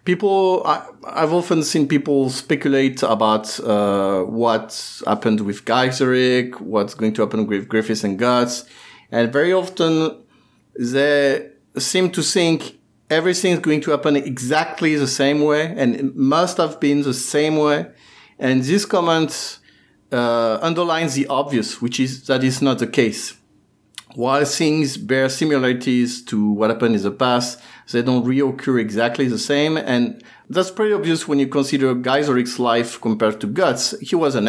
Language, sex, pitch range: English, male, 120-155 Hz